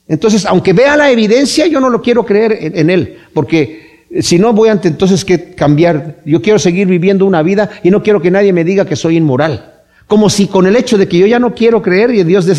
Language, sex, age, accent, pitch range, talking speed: Spanish, male, 50-69, Mexican, 160-215 Hz, 250 wpm